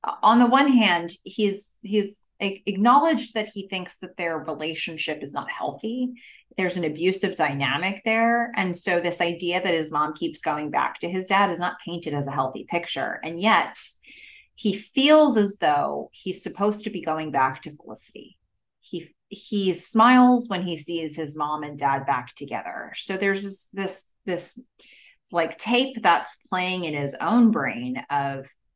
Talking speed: 170 wpm